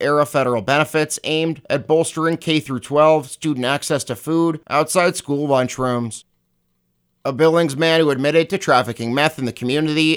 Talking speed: 160 wpm